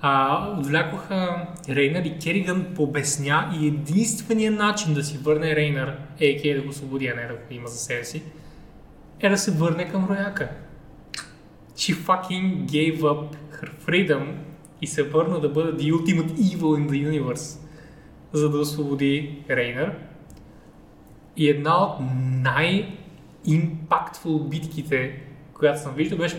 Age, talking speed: 20-39, 135 wpm